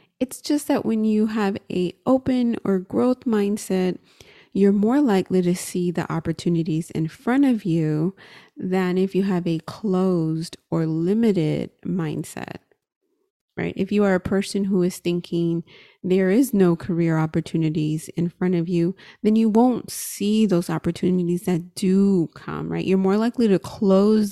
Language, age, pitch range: English, 30-49, 170-200 Hz